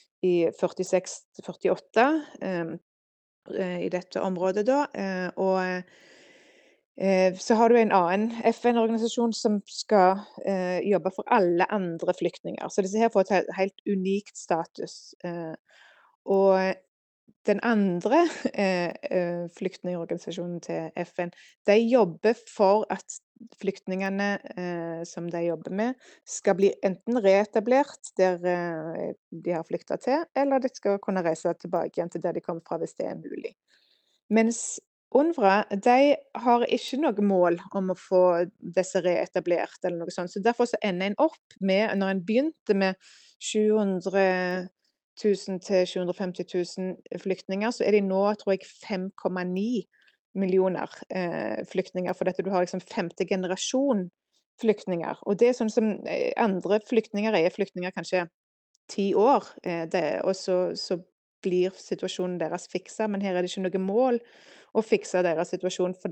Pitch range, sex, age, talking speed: 180-215 Hz, female, 20-39, 140 wpm